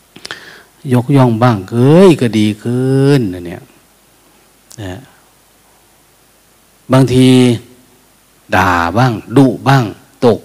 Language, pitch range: Thai, 105-140 Hz